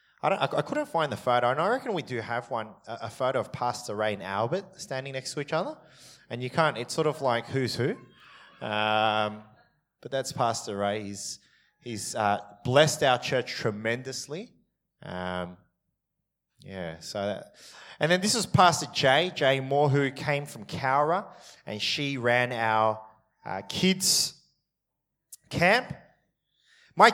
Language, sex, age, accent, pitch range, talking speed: English, male, 20-39, Australian, 100-140 Hz, 155 wpm